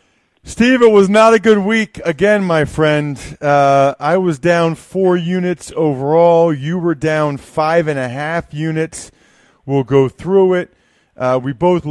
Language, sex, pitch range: English, male, 130-170 Hz